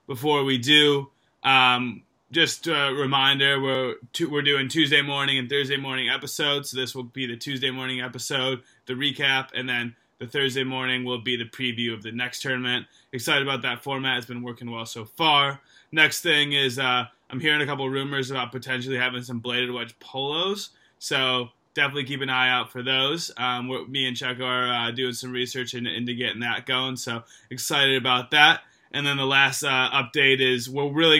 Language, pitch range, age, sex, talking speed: English, 125-140 Hz, 20-39, male, 195 wpm